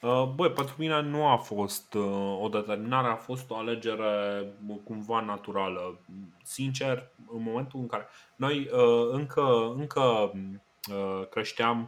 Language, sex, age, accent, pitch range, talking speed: Romanian, male, 20-39, native, 105-135 Hz, 115 wpm